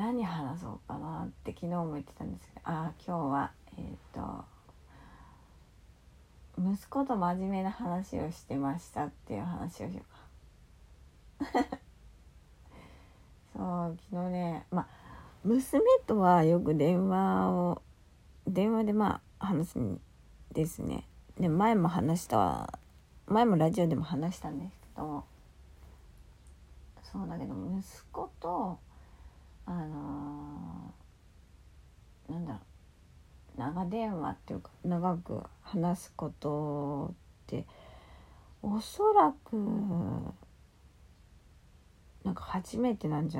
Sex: female